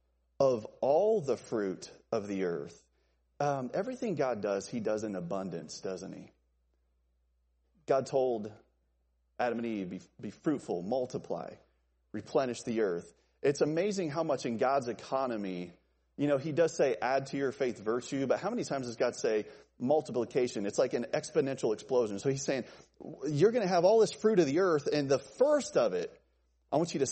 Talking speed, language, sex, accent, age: 180 wpm, English, male, American, 30-49